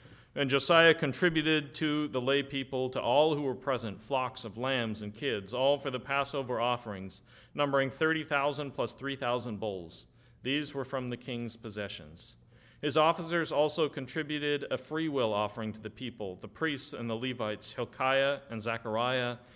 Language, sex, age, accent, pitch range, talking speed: English, male, 40-59, American, 115-140 Hz, 160 wpm